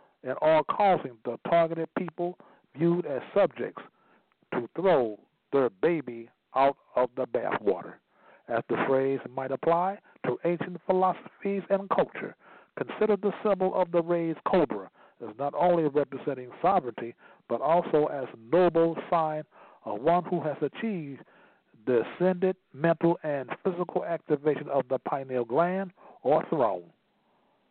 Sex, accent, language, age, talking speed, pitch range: male, American, English, 60-79, 130 wpm, 125-170 Hz